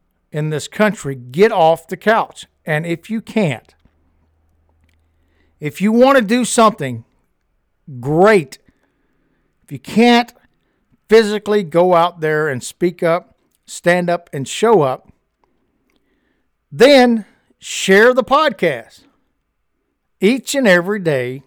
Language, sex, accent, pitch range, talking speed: English, male, American, 135-195 Hz, 115 wpm